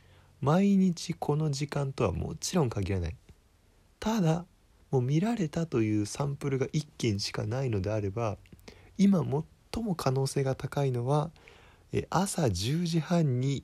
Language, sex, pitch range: Japanese, male, 85-135 Hz